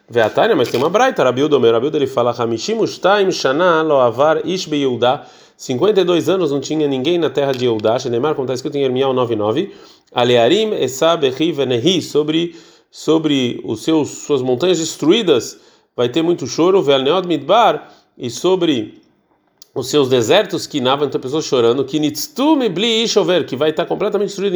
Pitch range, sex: 130-180 Hz, male